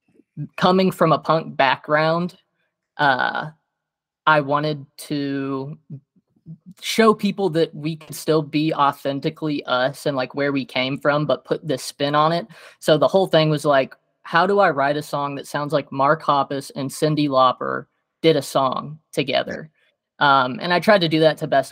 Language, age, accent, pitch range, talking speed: English, 20-39, American, 135-155 Hz, 175 wpm